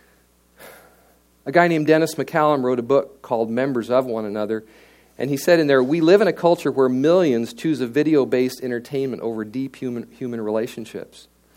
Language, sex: English, male